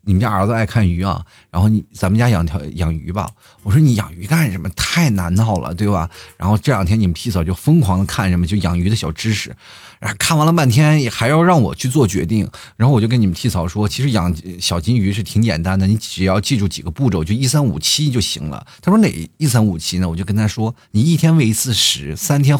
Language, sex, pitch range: Chinese, male, 95-135 Hz